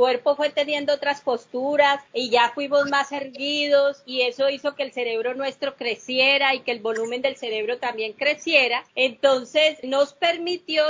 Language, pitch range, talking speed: Spanish, 235-295 Hz, 160 wpm